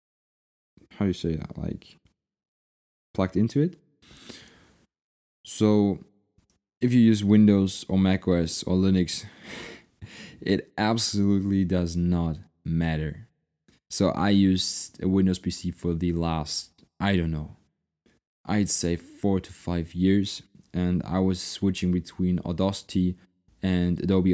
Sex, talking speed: male, 125 wpm